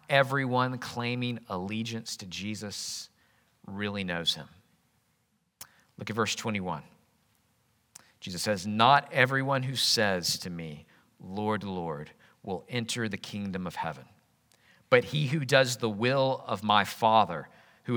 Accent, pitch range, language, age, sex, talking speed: American, 100-130 Hz, English, 50-69, male, 125 wpm